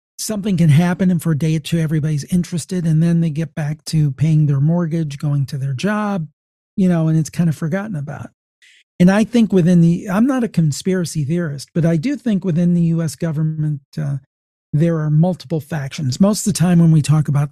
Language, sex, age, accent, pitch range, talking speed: English, male, 40-59, American, 155-185 Hz, 215 wpm